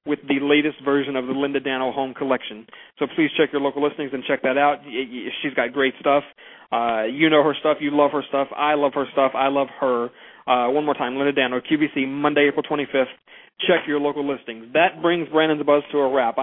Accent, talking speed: American, 225 wpm